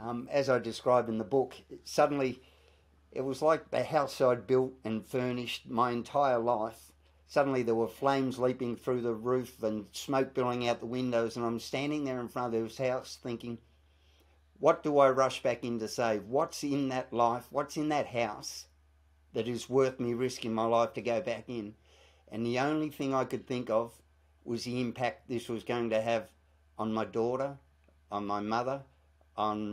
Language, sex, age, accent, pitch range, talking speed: English, male, 50-69, Australian, 105-135 Hz, 190 wpm